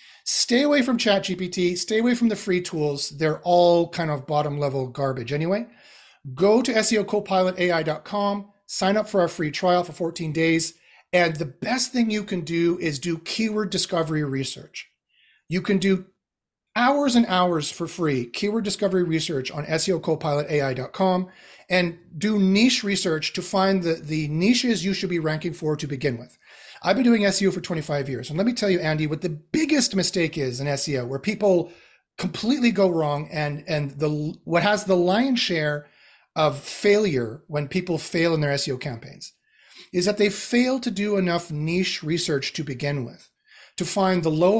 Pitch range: 155-200 Hz